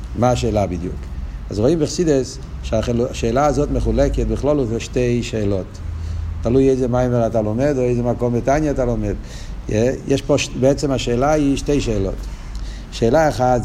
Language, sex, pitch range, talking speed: Hebrew, male, 110-145 Hz, 150 wpm